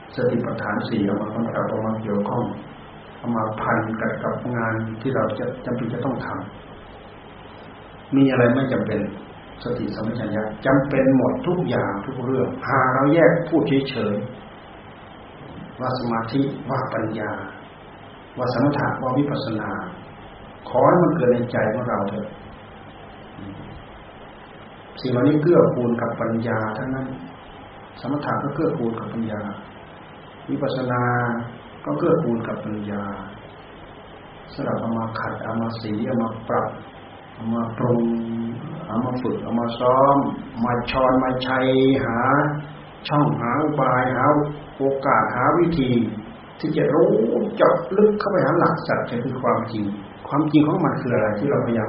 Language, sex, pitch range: Thai, male, 110-135 Hz